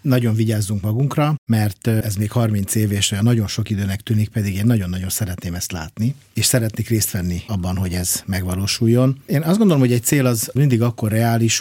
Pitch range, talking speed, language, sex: 100-120 Hz, 190 wpm, Hungarian, male